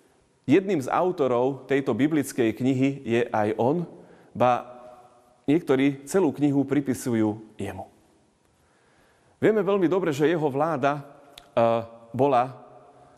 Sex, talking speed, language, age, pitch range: male, 100 wpm, Slovak, 30-49, 115-150 Hz